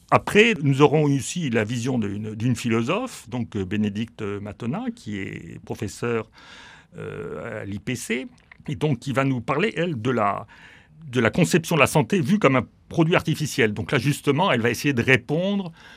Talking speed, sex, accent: 170 wpm, male, French